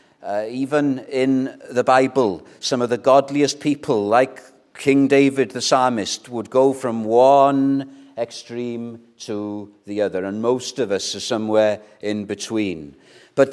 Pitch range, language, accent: 120-150 Hz, English, British